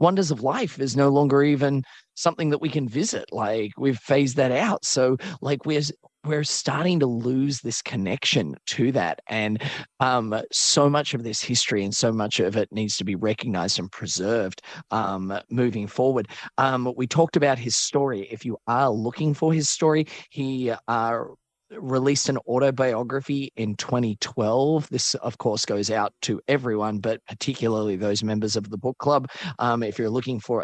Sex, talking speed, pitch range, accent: male, 175 wpm, 105-135 Hz, Australian